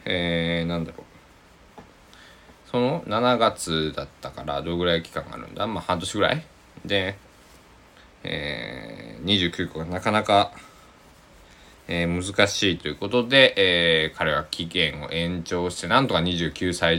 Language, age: Japanese, 20-39